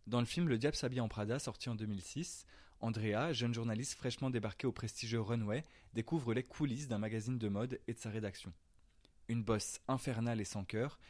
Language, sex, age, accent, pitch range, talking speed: French, male, 20-39, French, 105-130 Hz, 195 wpm